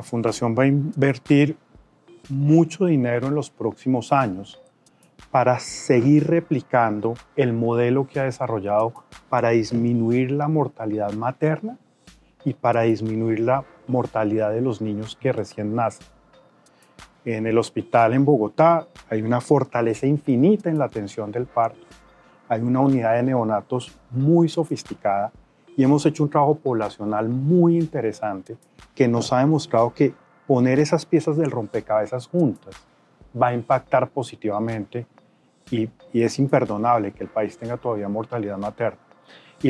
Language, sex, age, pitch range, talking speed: Spanish, male, 40-59, 110-140 Hz, 140 wpm